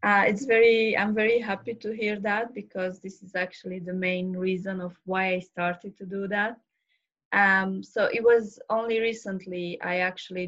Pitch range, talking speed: 180-205 Hz, 180 wpm